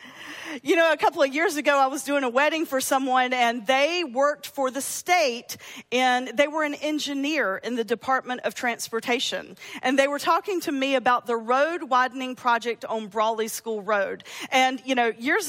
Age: 40-59